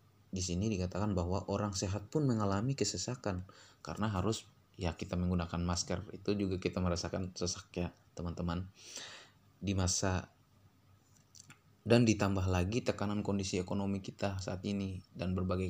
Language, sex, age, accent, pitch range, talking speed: Indonesian, male, 20-39, native, 90-105 Hz, 135 wpm